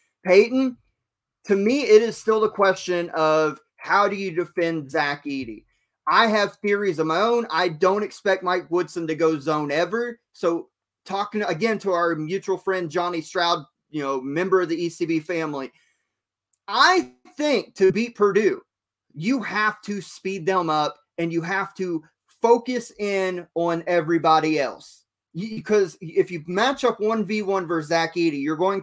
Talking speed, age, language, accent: 160 wpm, 30-49, English, American